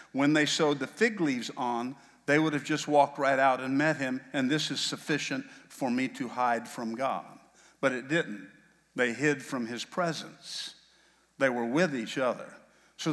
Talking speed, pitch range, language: 185 wpm, 135-160 Hz, English